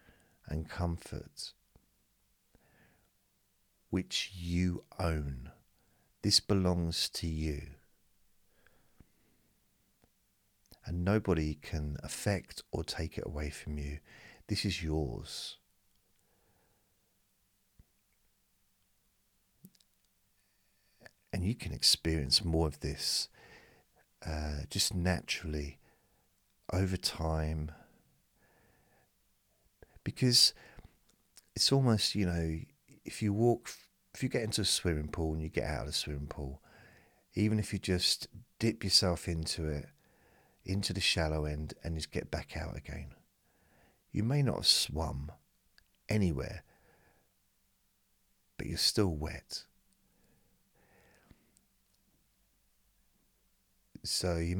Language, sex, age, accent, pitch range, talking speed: English, male, 50-69, British, 80-100 Hz, 95 wpm